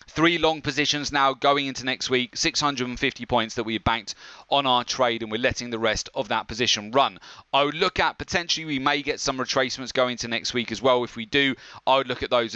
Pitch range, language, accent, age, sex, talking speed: 110-125 Hz, English, British, 30-49, male, 235 wpm